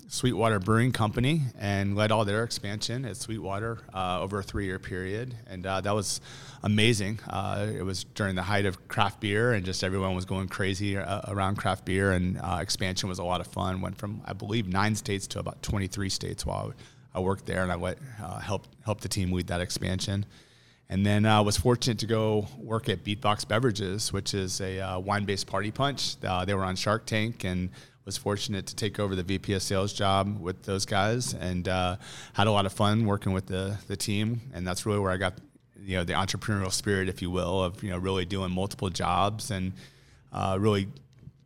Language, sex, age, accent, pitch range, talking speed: English, male, 30-49, American, 95-110 Hz, 205 wpm